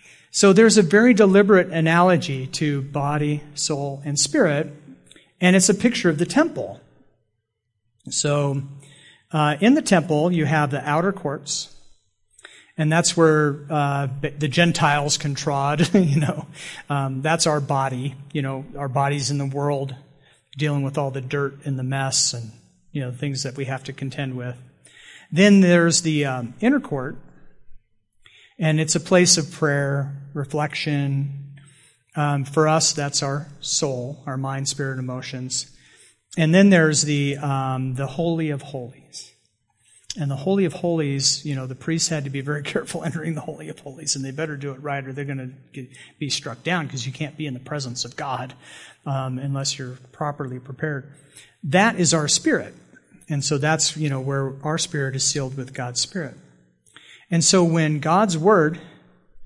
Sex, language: male, English